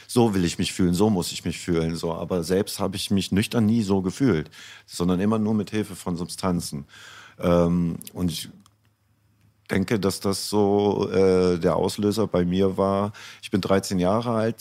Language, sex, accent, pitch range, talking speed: German, male, German, 90-110 Hz, 185 wpm